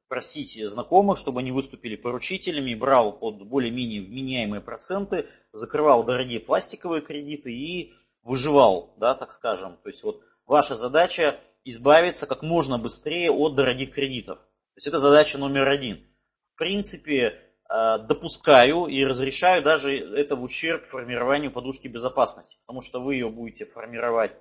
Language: Russian